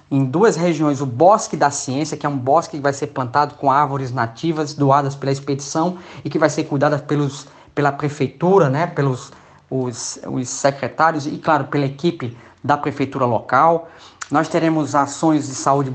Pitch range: 135-165 Hz